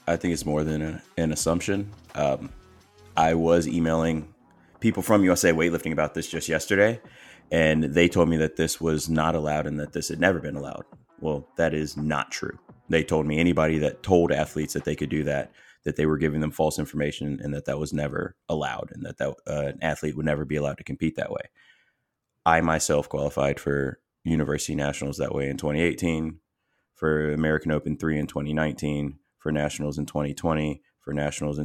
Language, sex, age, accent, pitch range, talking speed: English, male, 30-49, American, 75-80 Hz, 195 wpm